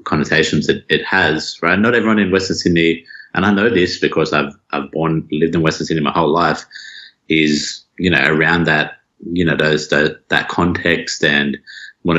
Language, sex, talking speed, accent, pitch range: English, male, 185 wpm, Australian, 75-90 Hz